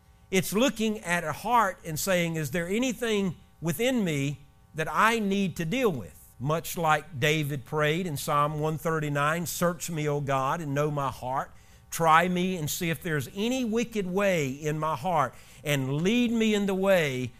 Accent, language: American, English